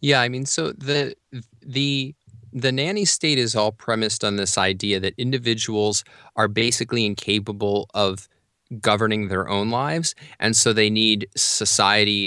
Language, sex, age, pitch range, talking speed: English, male, 20-39, 95-115 Hz, 145 wpm